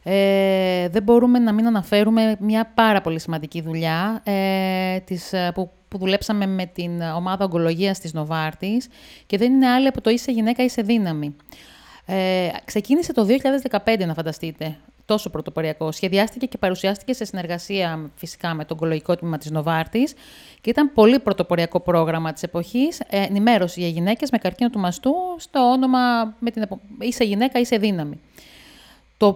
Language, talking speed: Greek, 155 wpm